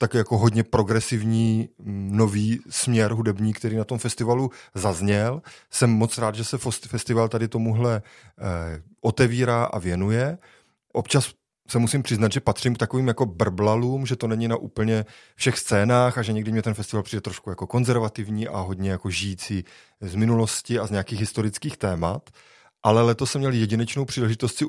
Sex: male